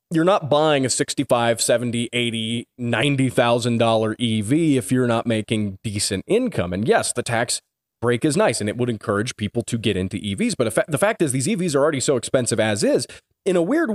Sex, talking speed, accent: male, 200 wpm, American